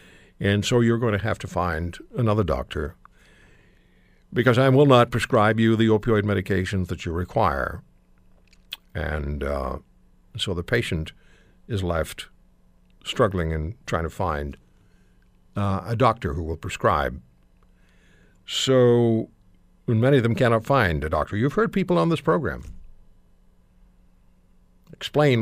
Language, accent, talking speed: English, American, 130 wpm